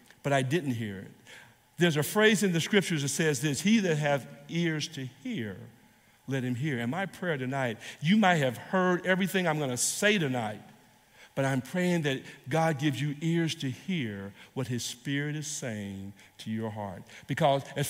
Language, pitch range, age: English, 115-150 Hz, 50-69